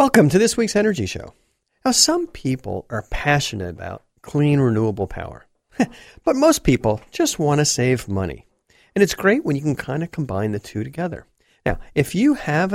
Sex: male